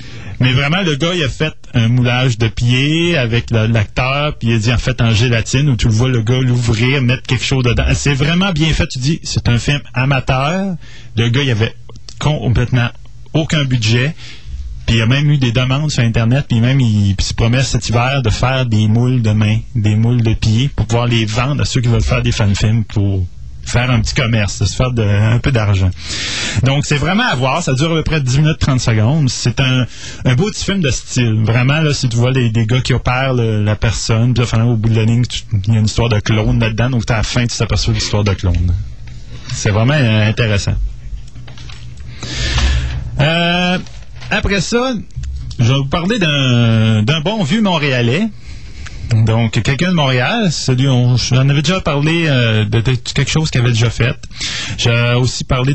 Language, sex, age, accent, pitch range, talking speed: French, male, 30-49, Canadian, 115-140 Hz, 210 wpm